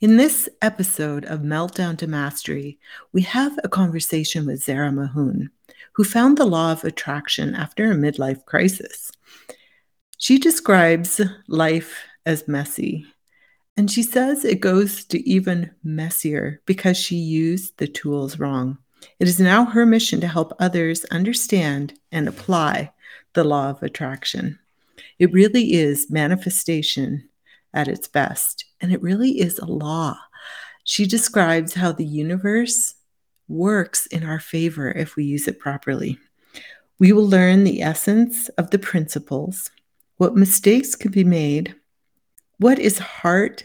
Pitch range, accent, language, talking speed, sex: 155-205 Hz, American, English, 140 wpm, female